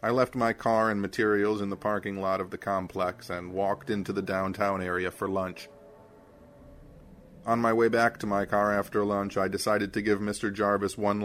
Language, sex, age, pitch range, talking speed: English, male, 30-49, 95-110 Hz, 195 wpm